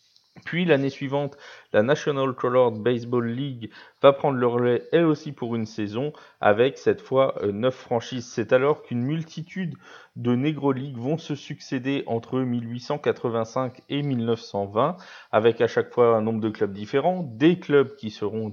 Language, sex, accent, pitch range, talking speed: French, male, French, 115-150 Hz, 160 wpm